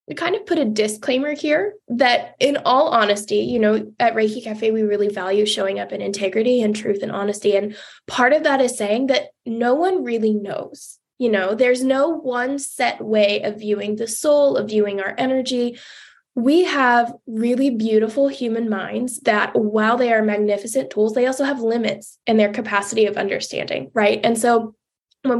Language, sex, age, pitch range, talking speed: English, female, 10-29, 215-255 Hz, 185 wpm